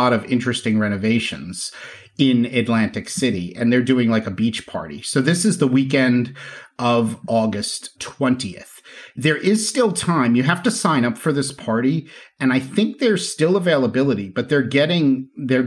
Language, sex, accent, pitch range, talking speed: English, male, American, 120-155 Hz, 165 wpm